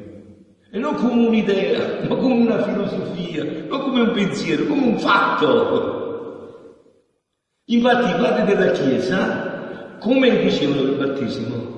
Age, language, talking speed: 50-69, Italian, 120 wpm